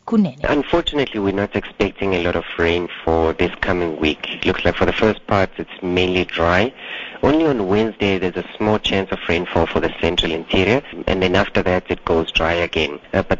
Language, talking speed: English, 200 wpm